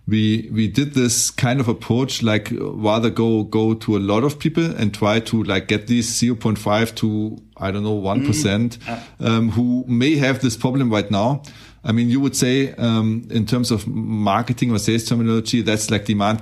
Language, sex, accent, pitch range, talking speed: English, male, German, 110-130 Hz, 195 wpm